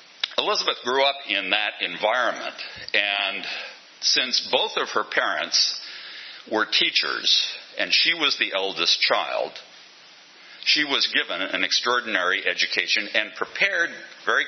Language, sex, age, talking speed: English, male, 60-79, 120 wpm